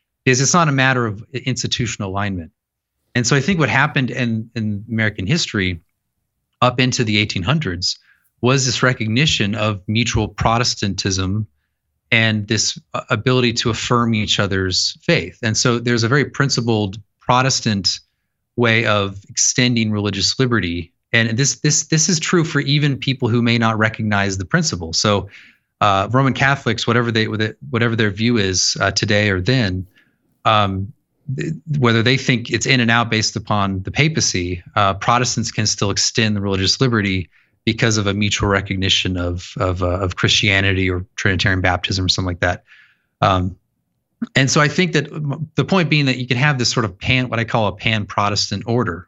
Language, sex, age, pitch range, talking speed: English, male, 30-49, 100-125 Hz, 170 wpm